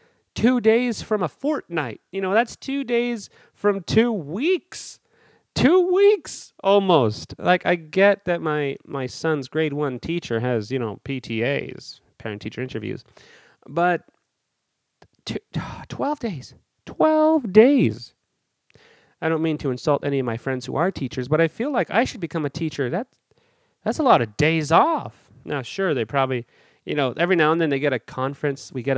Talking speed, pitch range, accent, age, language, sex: 165 wpm, 130-190 Hz, American, 30-49, English, male